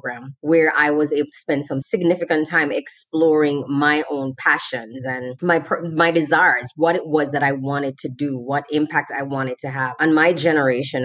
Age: 20-39